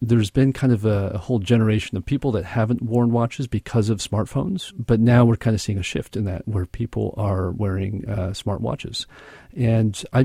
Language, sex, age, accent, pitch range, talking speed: English, male, 40-59, American, 100-120 Hz, 205 wpm